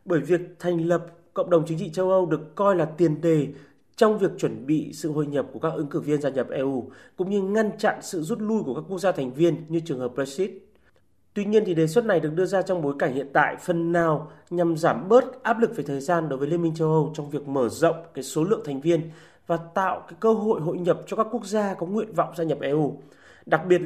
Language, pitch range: Vietnamese, 150-185 Hz